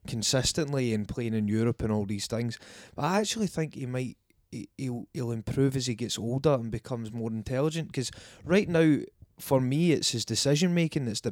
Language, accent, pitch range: English, British, 110-140 Hz